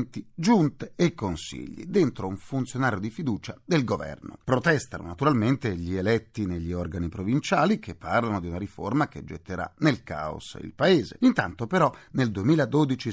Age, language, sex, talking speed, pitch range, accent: 40-59, Italian, male, 145 wpm, 100-155 Hz, native